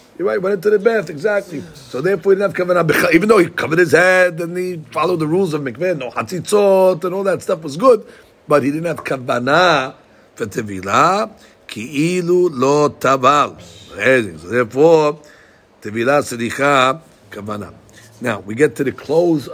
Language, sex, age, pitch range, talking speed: English, male, 50-69, 125-180 Hz, 165 wpm